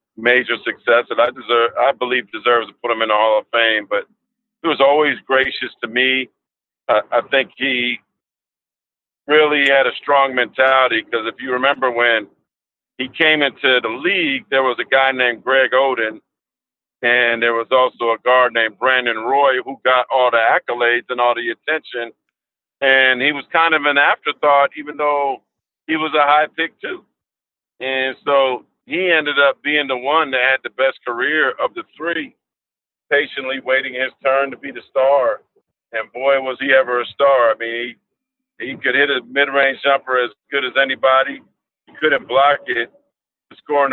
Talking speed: 180 wpm